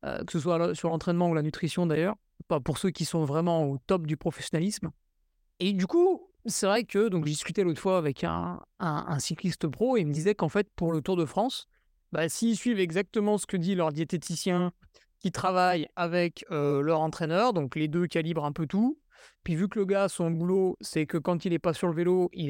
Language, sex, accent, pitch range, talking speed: French, male, French, 165-210 Hz, 230 wpm